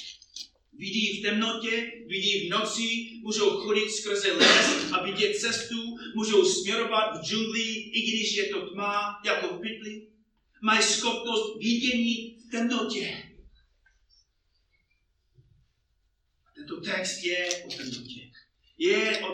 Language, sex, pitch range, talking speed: Czech, male, 195-240 Hz, 115 wpm